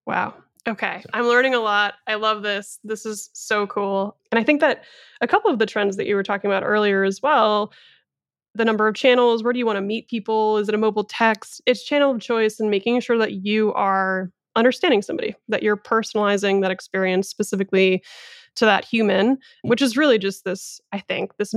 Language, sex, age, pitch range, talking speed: English, female, 20-39, 190-230 Hz, 210 wpm